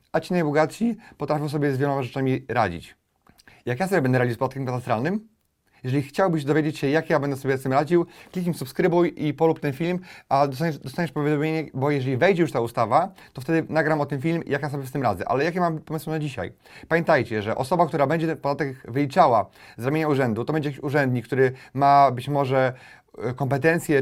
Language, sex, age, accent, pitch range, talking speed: Polish, male, 30-49, native, 140-165 Hz, 205 wpm